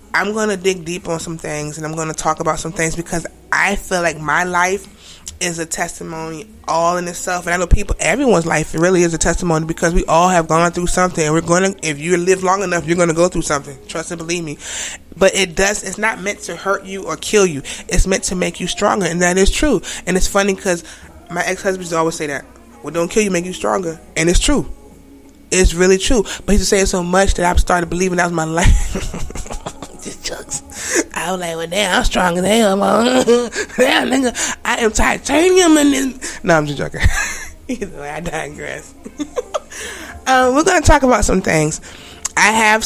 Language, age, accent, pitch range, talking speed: English, 20-39, American, 160-195 Hz, 215 wpm